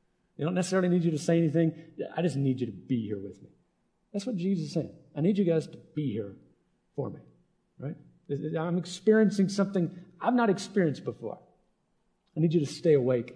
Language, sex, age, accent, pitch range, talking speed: English, male, 50-69, American, 140-195 Hz, 200 wpm